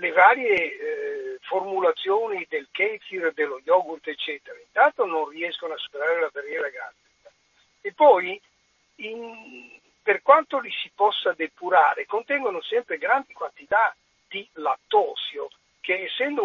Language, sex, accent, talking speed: Italian, male, native, 120 wpm